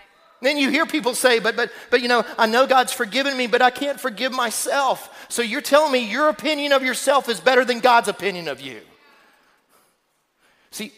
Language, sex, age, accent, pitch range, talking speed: English, male, 40-59, American, 170-260 Hz, 195 wpm